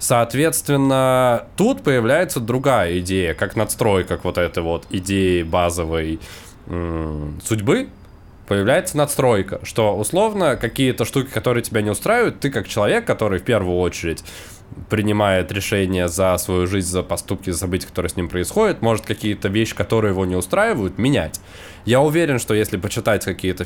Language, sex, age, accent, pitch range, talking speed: Russian, male, 20-39, native, 90-115 Hz, 145 wpm